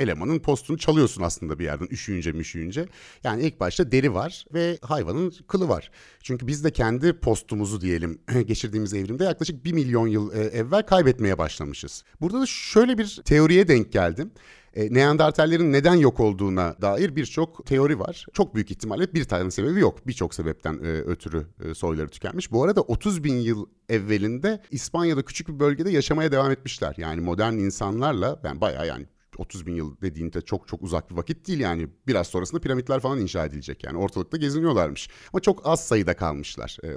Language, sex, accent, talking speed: Turkish, male, native, 170 wpm